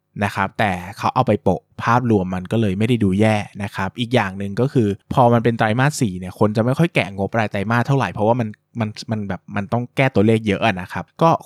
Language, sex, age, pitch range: Thai, male, 20-39, 95-125 Hz